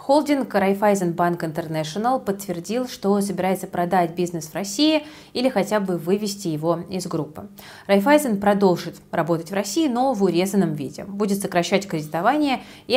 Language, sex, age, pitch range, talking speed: Russian, female, 30-49, 170-215 Hz, 145 wpm